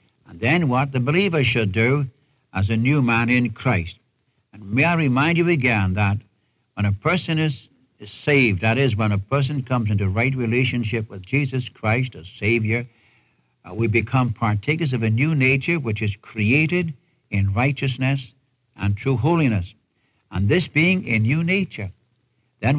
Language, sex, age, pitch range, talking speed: English, male, 60-79, 110-140 Hz, 165 wpm